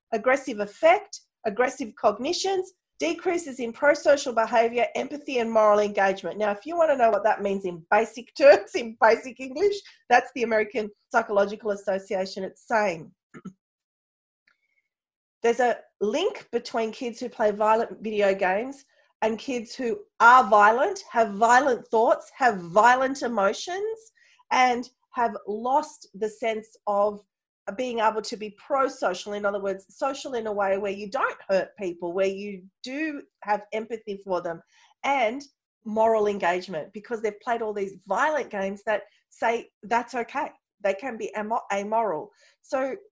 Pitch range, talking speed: 205-275 Hz, 145 wpm